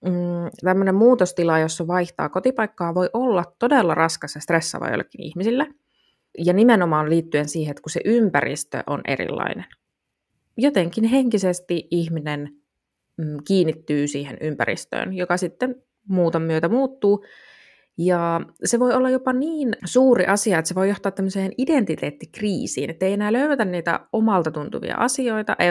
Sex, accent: female, native